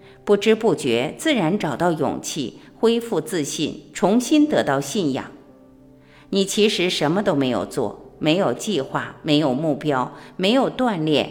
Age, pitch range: 50-69, 145-215 Hz